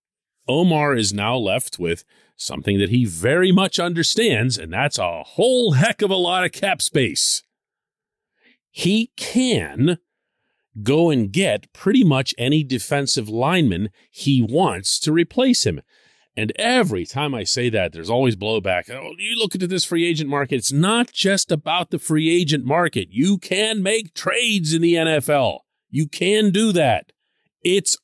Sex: male